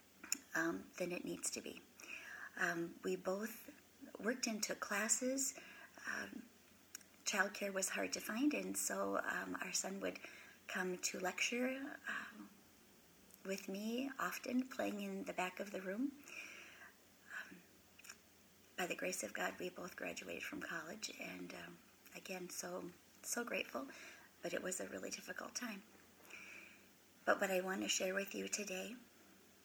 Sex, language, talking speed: female, English, 145 wpm